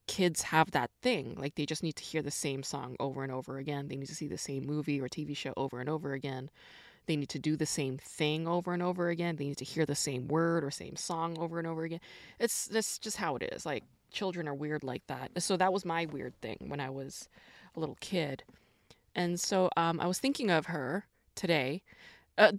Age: 20-39